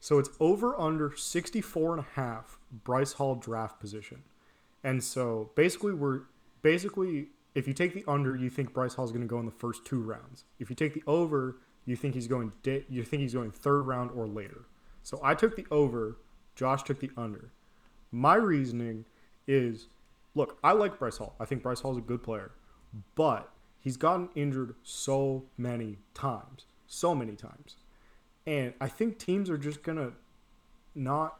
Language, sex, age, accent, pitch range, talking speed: English, male, 20-39, American, 115-140 Hz, 185 wpm